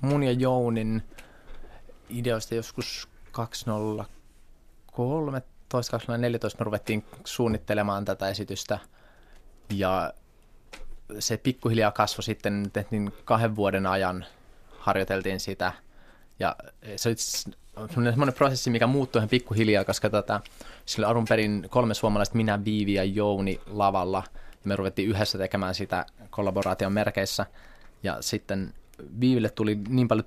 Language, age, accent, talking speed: Finnish, 20-39, native, 110 wpm